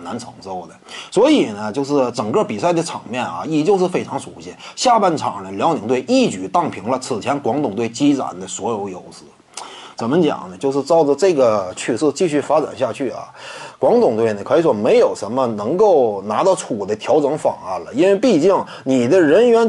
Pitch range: 140-230 Hz